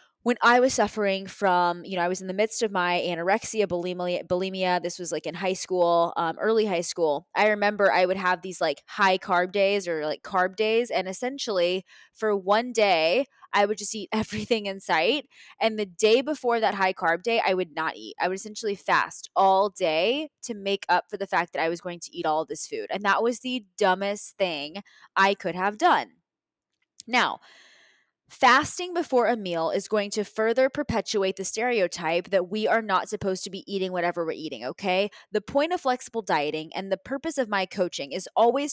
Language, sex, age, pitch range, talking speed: English, female, 20-39, 185-235 Hz, 205 wpm